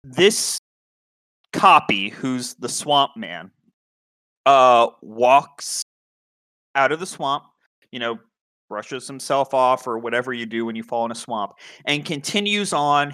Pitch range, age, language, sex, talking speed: 125-180 Hz, 30-49, English, male, 135 wpm